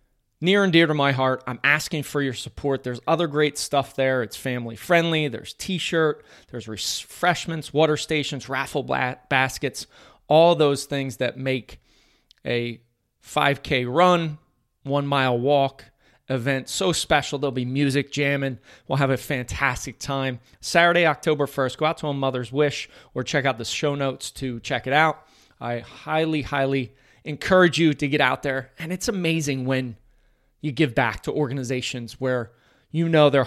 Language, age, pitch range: English, 30-49, 125-150 Hz